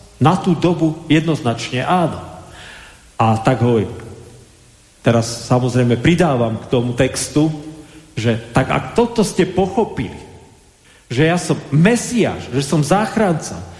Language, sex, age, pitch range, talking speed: Slovak, male, 40-59, 115-160 Hz, 115 wpm